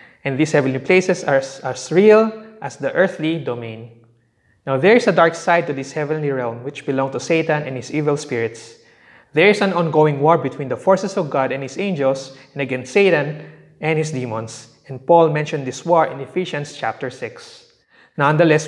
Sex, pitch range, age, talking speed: male, 135-175 Hz, 20-39, 185 wpm